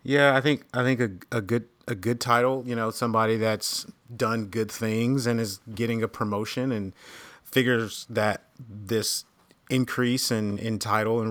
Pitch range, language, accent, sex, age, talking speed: 105-120 Hz, English, American, male, 30-49, 170 wpm